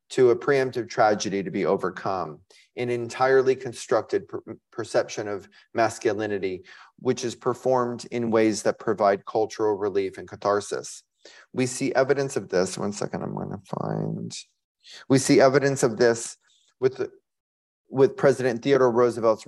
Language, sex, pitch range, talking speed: English, male, 125-155 Hz, 135 wpm